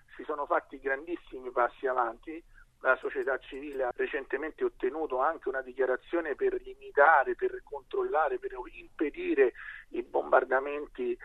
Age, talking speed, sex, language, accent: 50-69, 125 wpm, male, Italian, native